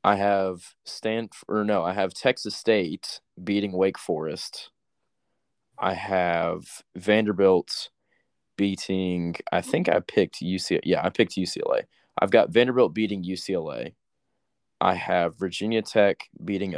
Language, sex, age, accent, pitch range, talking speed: English, male, 20-39, American, 90-100 Hz, 125 wpm